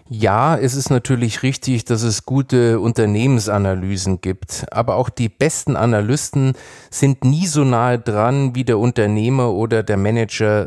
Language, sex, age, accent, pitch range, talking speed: German, male, 30-49, German, 110-135 Hz, 145 wpm